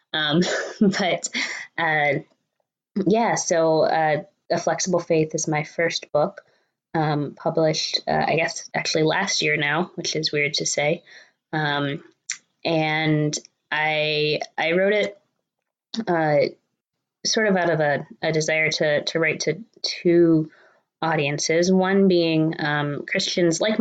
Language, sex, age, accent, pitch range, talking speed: English, female, 20-39, American, 150-180 Hz, 130 wpm